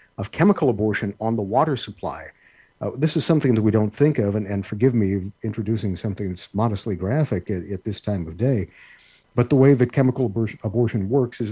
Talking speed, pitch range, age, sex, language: 210 wpm, 100-125 Hz, 50-69, male, English